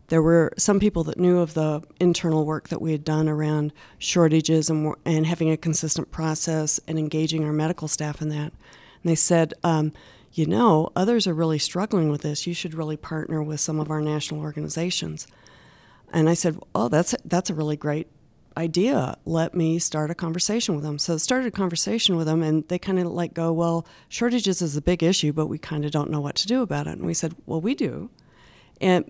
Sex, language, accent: female, English, American